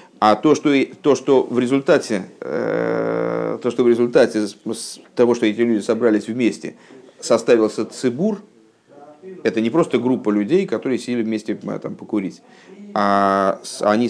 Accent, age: native, 50-69